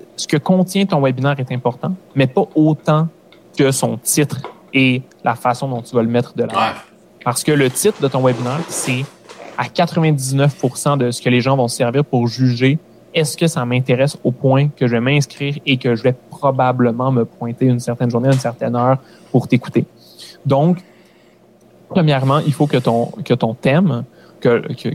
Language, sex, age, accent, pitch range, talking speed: French, male, 20-39, Canadian, 120-145 Hz, 190 wpm